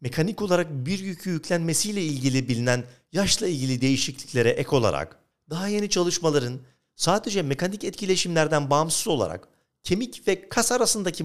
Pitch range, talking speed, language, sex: 135-180 Hz, 130 wpm, Turkish, male